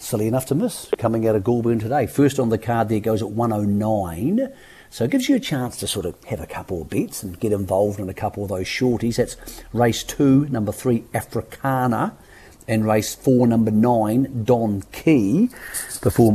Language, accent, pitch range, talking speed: English, British, 100-125 Hz, 200 wpm